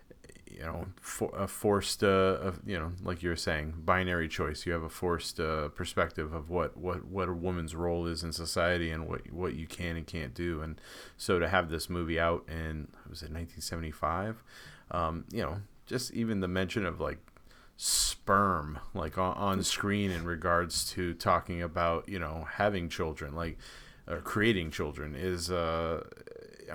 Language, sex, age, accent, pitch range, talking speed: English, male, 30-49, American, 80-95 Hz, 175 wpm